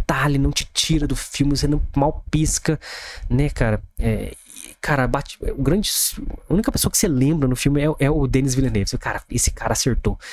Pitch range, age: 110-140 Hz, 20-39